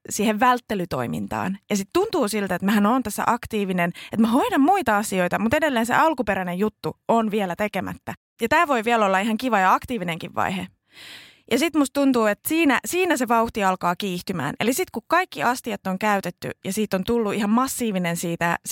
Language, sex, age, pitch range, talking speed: Finnish, female, 20-39, 185-245 Hz, 190 wpm